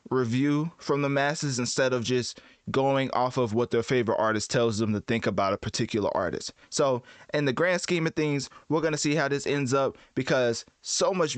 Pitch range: 120-150 Hz